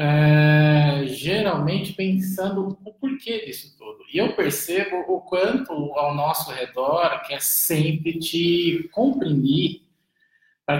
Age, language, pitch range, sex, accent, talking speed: 20-39, Portuguese, 150-185 Hz, male, Brazilian, 110 wpm